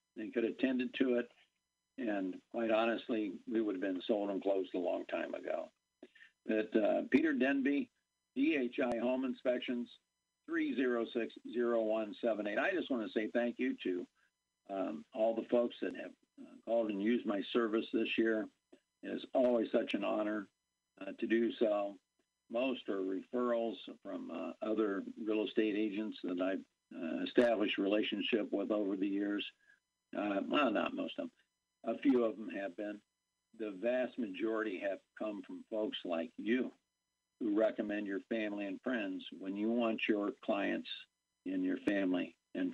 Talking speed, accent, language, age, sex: 160 wpm, American, English, 50-69, male